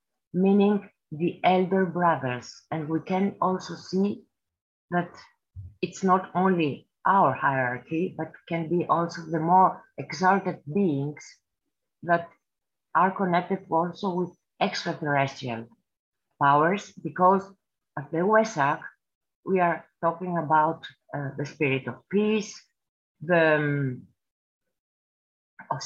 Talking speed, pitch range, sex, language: 105 wpm, 150-190 Hz, female, English